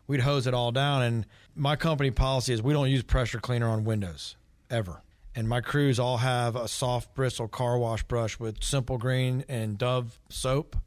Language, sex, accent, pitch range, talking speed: English, male, American, 120-140 Hz, 195 wpm